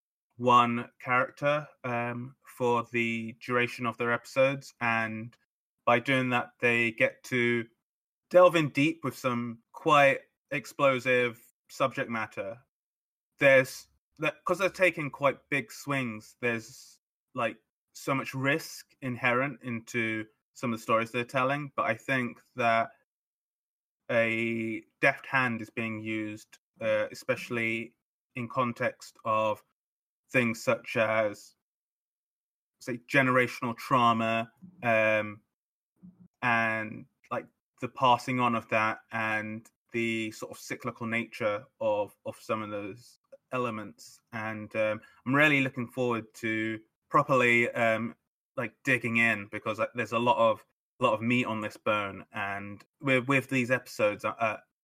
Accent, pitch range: British, 110-130 Hz